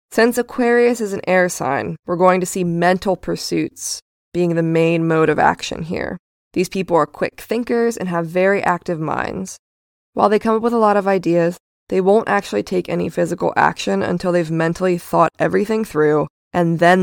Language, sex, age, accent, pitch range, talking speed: English, female, 20-39, American, 170-200 Hz, 185 wpm